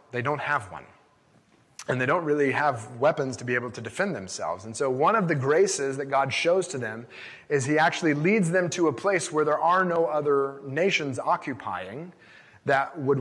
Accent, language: American, English